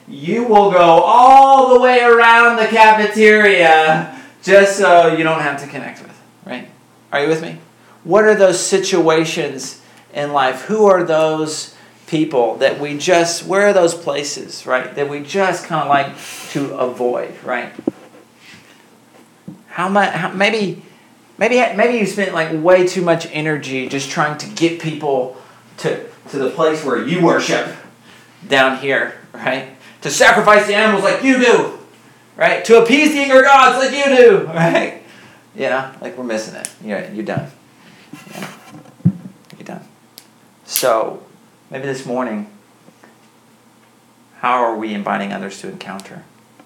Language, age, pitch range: English, 40-59, 130-205 Hz